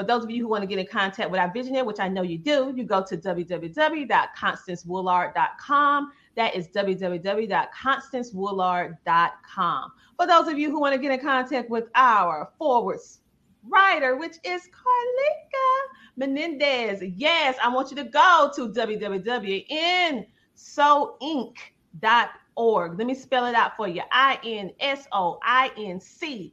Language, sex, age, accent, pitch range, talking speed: English, female, 30-49, American, 220-285 Hz, 145 wpm